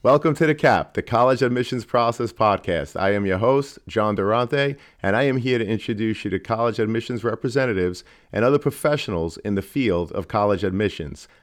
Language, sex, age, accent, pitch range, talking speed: English, male, 40-59, American, 95-125 Hz, 185 wpm